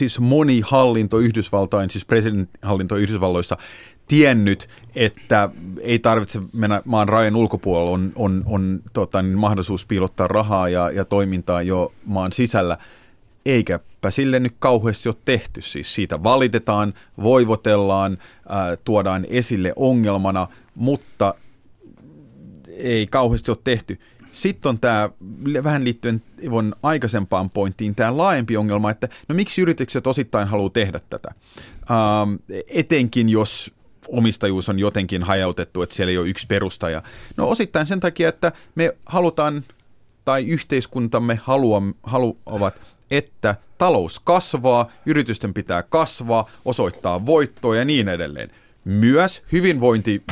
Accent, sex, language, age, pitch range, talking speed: native, male, Finnish, 30-49, 100-125 Hz, 120 wpm